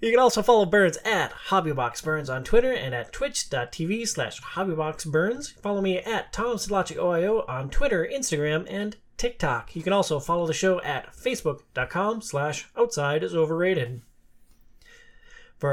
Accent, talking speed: American, 135 wpm